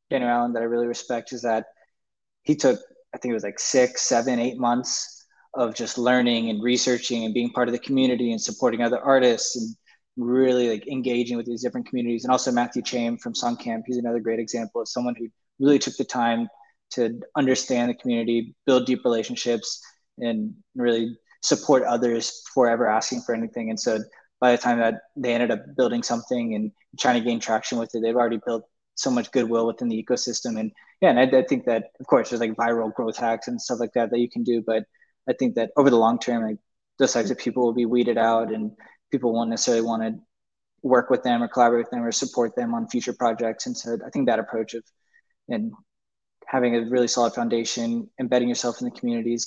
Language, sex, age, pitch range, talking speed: English, male, 20-39, 115-125 Hz, 215 wpm